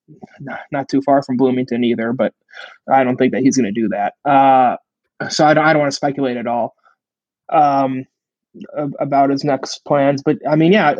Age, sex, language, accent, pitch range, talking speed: 20-39, male, English, American, 135-155 Hz, 195 wpm